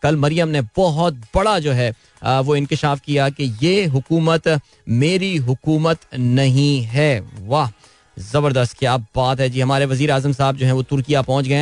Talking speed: 50 wpm